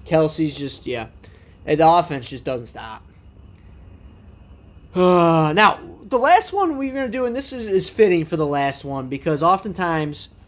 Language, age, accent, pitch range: English, 20-39, American, 130-180 Hz